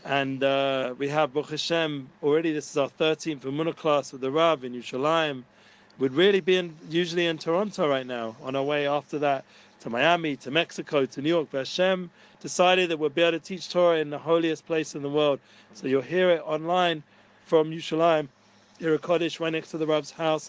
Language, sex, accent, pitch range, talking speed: English, male, British, 145-170 Hz, 200 wpm